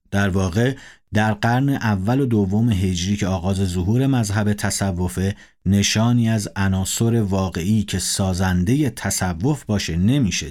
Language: Persian